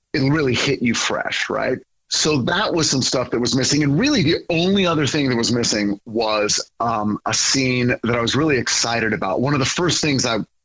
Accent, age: American, 40-59